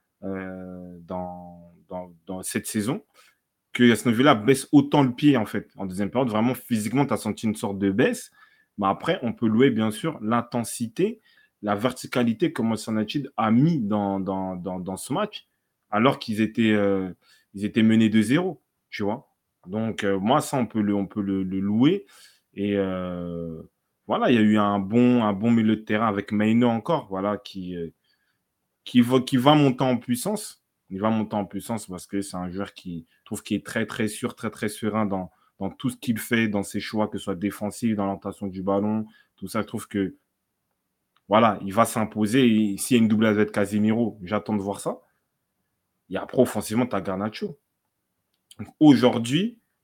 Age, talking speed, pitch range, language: 20-39, 195 wpm, 100-125 Hz, French